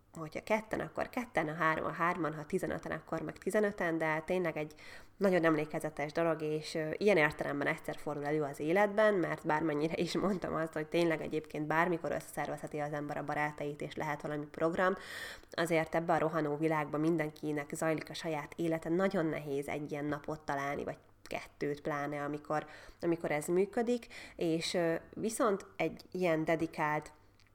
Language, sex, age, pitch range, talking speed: Hungarian, female, 20-39, 150-175 Hz, 155 wpm